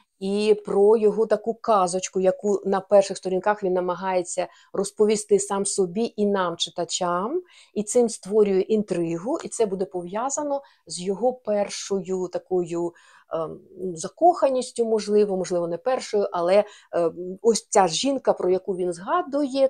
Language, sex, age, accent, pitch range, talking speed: Ukrainian, female, 50-69, native, 185-235 Hz, 130 wpm